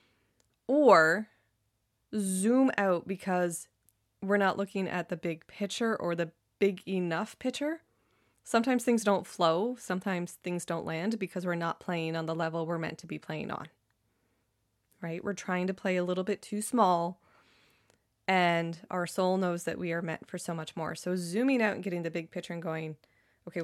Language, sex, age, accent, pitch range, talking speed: English, female, 20-39, American, 160-195 Hz, 180 wpm